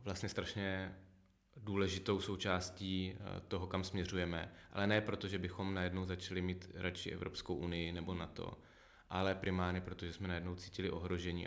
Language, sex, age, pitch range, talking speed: Czech, male, 20-39, 90-95 Hz, 150 wpm